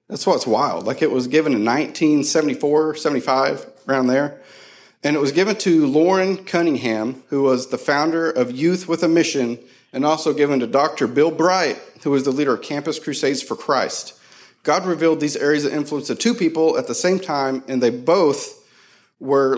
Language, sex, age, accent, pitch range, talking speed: English, male, 40-59, American, 125-160 Hz, 185 wpm